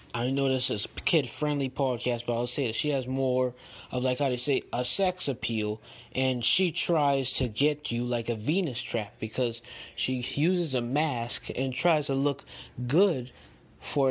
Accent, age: American, 20-39